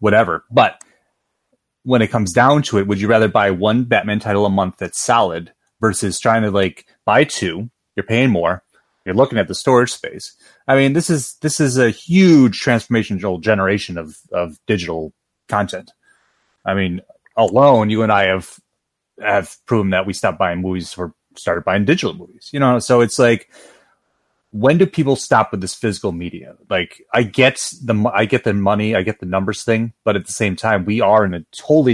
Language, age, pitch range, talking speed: English, 30-49, 100-130 Hz, 195 wpm